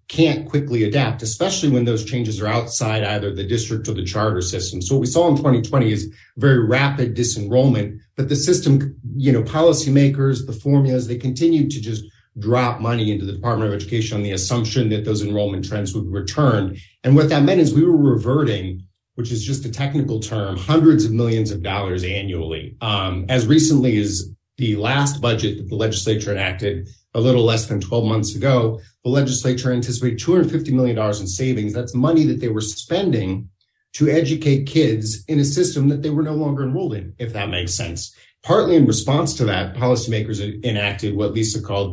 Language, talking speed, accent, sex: English, 190 wpm, American, male